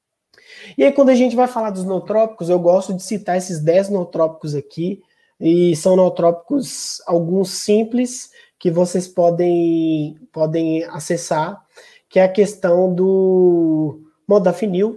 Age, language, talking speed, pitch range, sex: 20-39, Portuguese, 130 wpm, 170-200 Hz, male